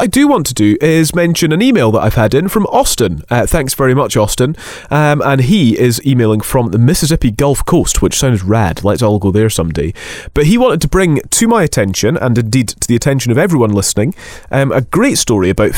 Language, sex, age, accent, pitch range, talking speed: English, male, 30-49, British, 110-155 Hz, 225 wpm